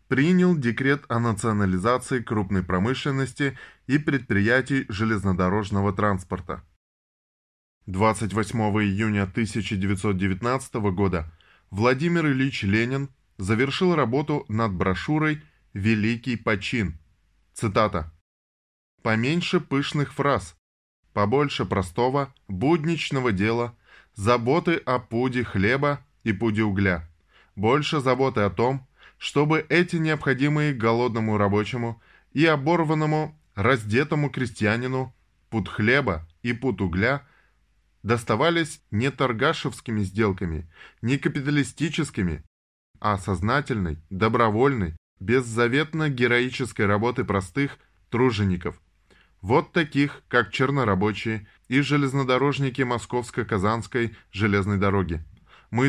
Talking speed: 85 wpm